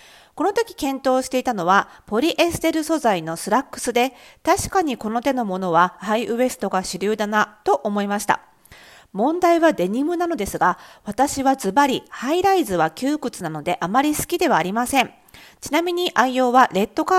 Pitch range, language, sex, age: 215-315 Hz, Japanese, female, 40-59